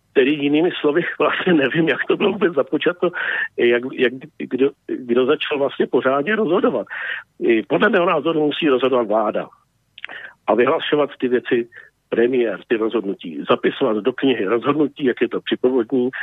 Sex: male